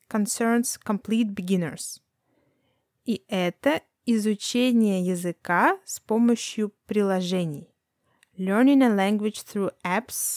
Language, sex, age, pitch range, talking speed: Russian, female, 20-39, 195-260 Hz, 85 wpm